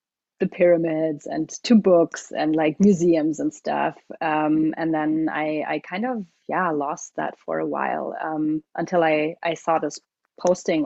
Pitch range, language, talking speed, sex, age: 160-190 Hz, English, 165 wpm, female, 30-49